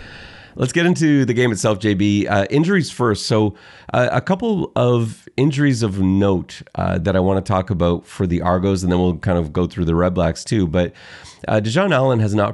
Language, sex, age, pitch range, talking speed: English, male, 30-49, 90-120 Hz, 215 wpm